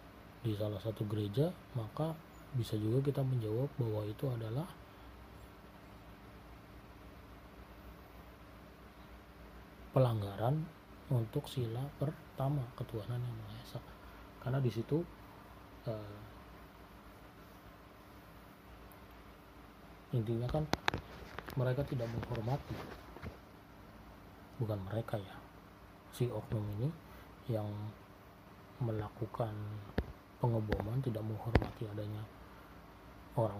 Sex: male